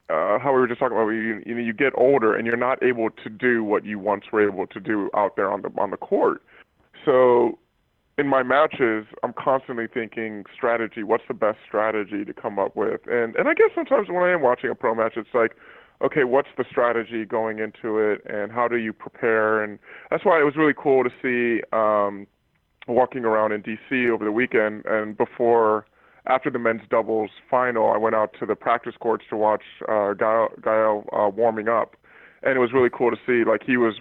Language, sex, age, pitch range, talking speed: English, female, 20-39, 110-135 Hz, 215 wpm